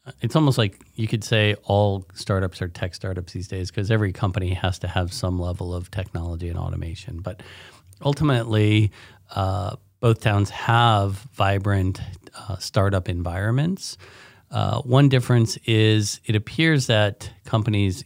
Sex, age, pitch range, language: male, 40-59, 95-115 Hz, English